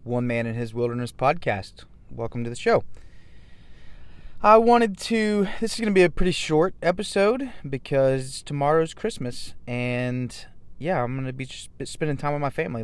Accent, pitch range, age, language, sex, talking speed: American, 115-160 Hz, 20-39, English, male, 175 wpm